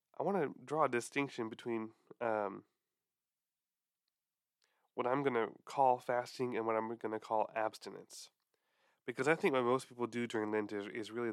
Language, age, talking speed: English, 20-39, 175 wpm